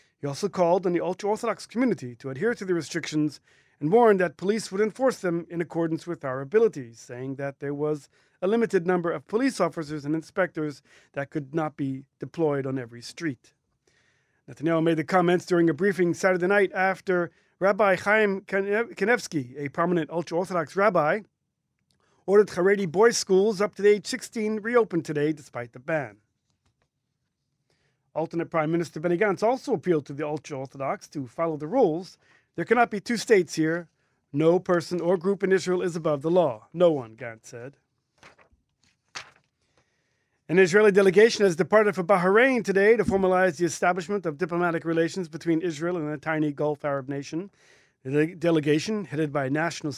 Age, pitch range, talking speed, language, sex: 40-59, 150-195 Hz, 165 wpm, English, male